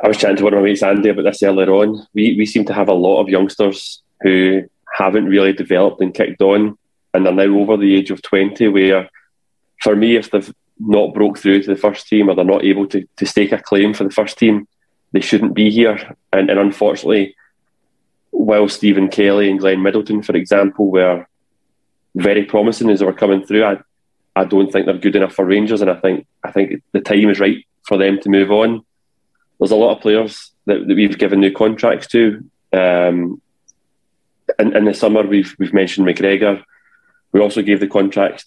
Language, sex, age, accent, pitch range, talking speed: English, male, 20-39, British, 95-105 Hz, 205 wpm